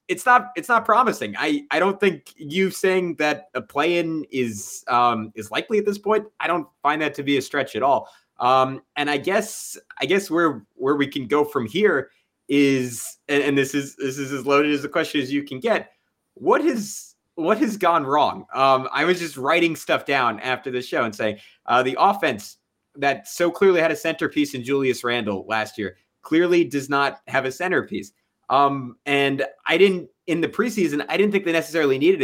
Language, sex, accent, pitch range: English, male, American, 125-160 Hz